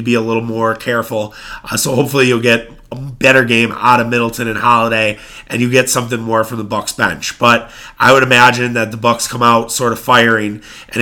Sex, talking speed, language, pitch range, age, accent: male, 220 wpm, English, 115-125 Hz, 30-49, American